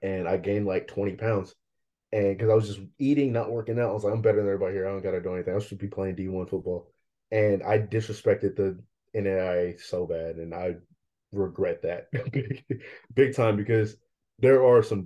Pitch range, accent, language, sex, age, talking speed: 95-115 Hz, American, English, male, 20-39, 205 wpm